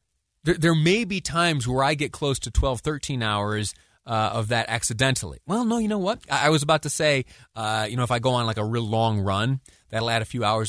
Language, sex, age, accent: English, male, 30-49, American